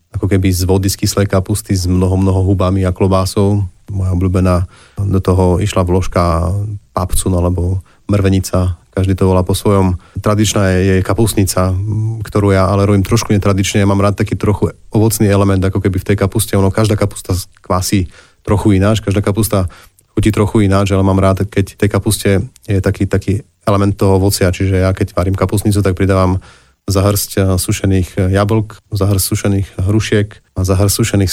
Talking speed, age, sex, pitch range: 170 wpm, 30-49, male, 95-105 Hz